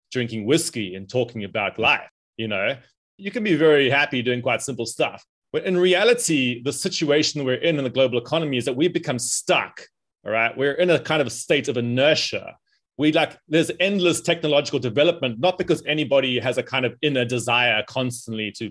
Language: English